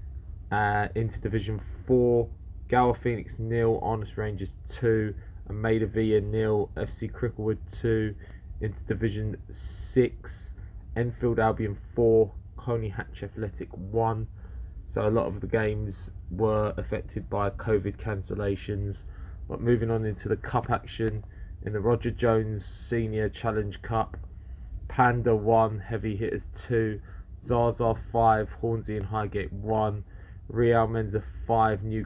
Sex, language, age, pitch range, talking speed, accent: male, English, 20-39, 95-115 Hz, 125 wpm, British